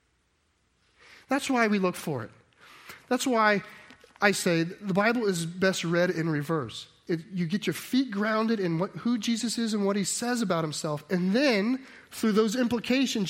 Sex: male